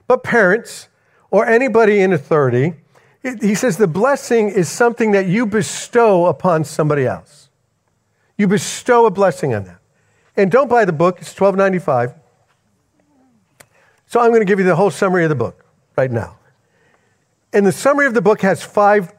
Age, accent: 50-69, American